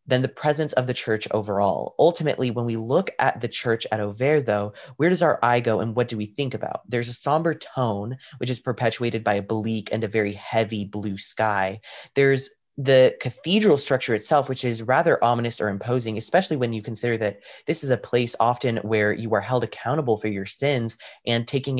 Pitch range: 105-130 Hz